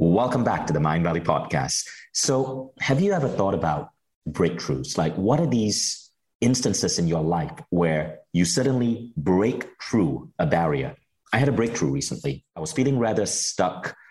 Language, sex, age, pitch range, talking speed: English, male, 30-49, 85-125 Hz, 165 wpm